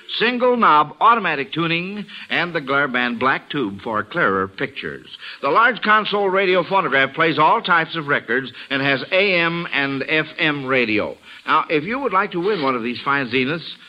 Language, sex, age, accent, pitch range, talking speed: English, male, 60-79, American, 140-210 Hz, 175 wpm